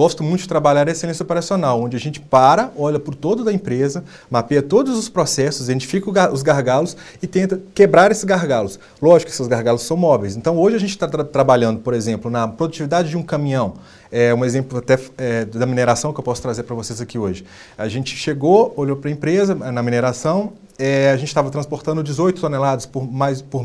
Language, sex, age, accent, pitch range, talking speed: Portuguese, male, 30-49, Brazilian, 120-170 Hz, 200 wpm